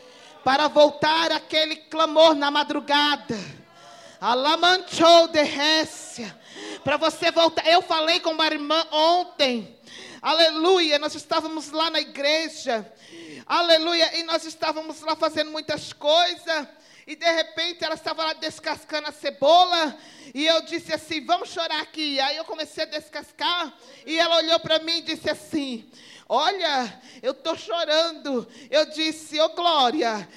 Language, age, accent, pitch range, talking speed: Portuguese, 40-59, Brazilian, 305-370 Hz, 130 wpm